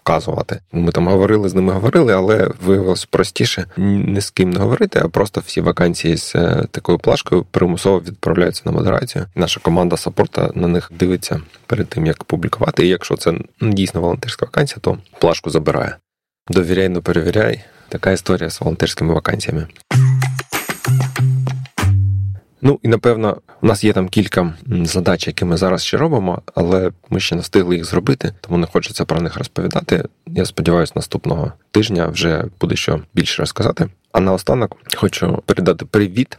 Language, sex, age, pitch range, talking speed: Ukrainian, male, 20-39, 85-100 Hz, 155 wpm